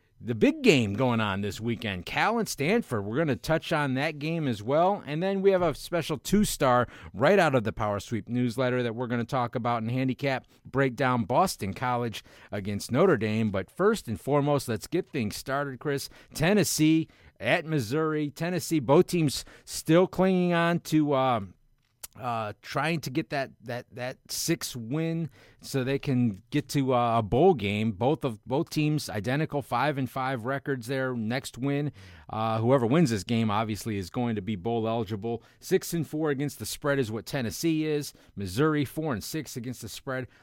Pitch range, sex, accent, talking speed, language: 115-155 Hz, male, American, 185 wpm, English